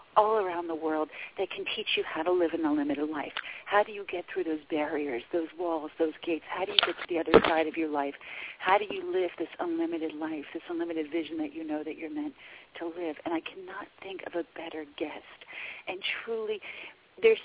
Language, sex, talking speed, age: English, female, 225 wpm, 40-59